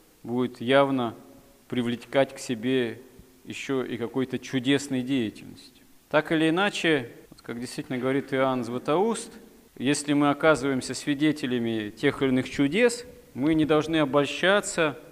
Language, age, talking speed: Russian, 40-59, 120 wpm